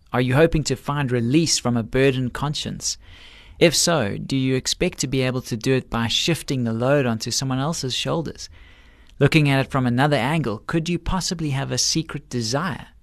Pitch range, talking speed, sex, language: 115-155 Hz, 195 wpm, male, English